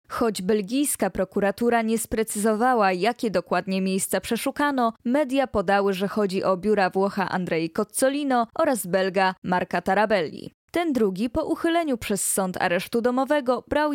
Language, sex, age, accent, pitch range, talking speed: Polish, female, 20-39, native, 195-265 Hz, 135 wpm